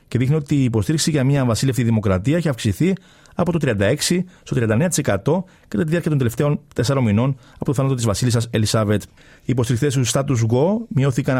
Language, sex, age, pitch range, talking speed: Greek, male, 40-59, 120-150 Hz, 185 wpm